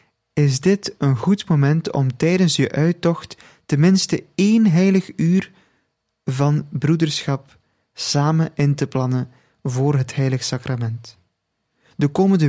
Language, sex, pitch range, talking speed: Dutch, male, 130-165 Hz, 120 wpm